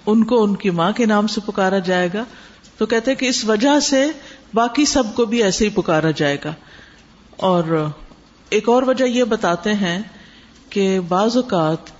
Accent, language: Indian, English